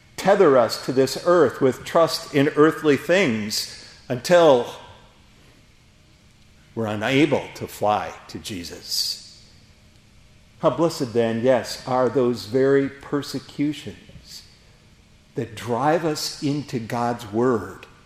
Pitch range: 110-150 Hz